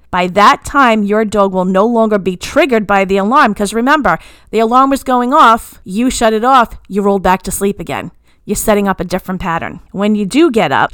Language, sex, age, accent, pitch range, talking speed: English, female, 40-59, American, 185-220 Hz, 225 wpm